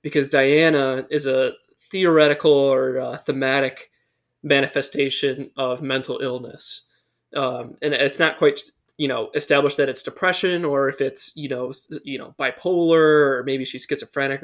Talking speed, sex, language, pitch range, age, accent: 145 wpm, male, English, 135-160 Hz, 20-39, American